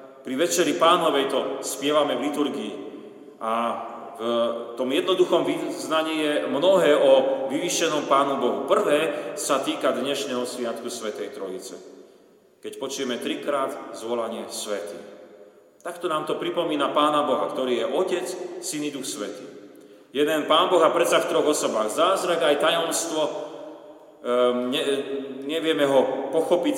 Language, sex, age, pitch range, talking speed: Slovak, male, 40-59, 125-160 Hz, 130 wpm